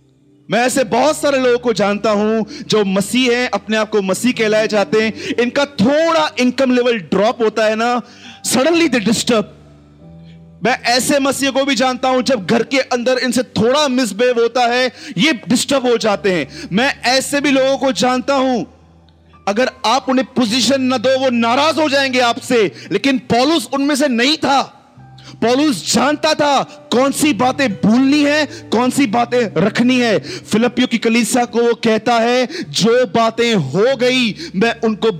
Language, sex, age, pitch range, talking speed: Hindi, male, 30-49, 185-255 Hz, 165 wpm